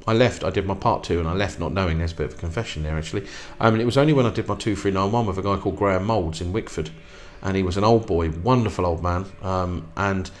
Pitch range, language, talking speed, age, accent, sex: 90-120 Hz, English, 290 wpm, 40-59, British, male